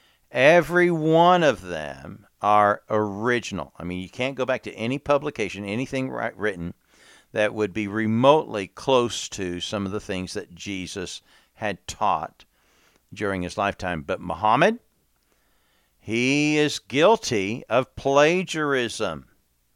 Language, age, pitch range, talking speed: English, 50-69, 90-115 Hz, 125 wpm